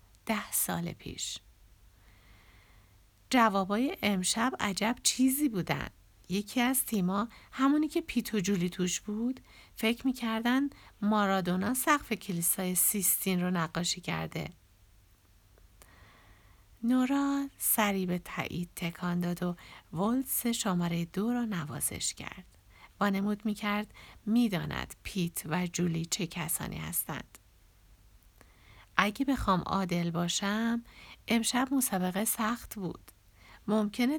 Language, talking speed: Persian, 105 wpm